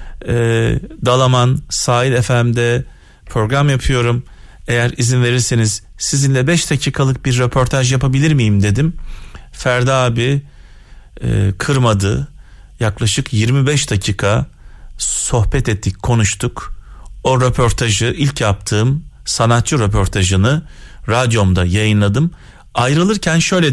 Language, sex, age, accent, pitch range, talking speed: Turkish, male, 40-59, native, 100-135 Hz, 95 wpm